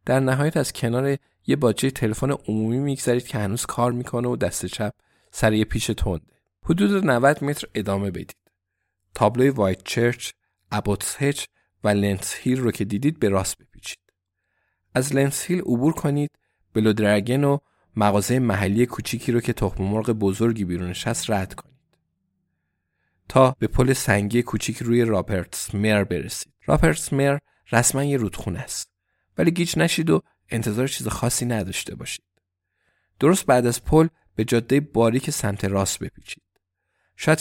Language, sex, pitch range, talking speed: Persian, male, 100-130 Hz, 145 wpm